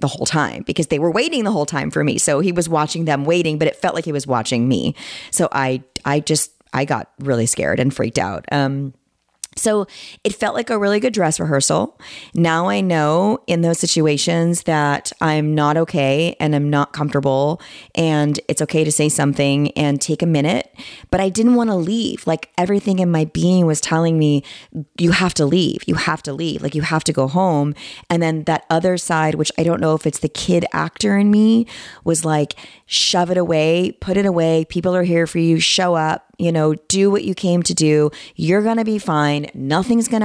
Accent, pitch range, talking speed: American, 150-180 Hz, 215 wpm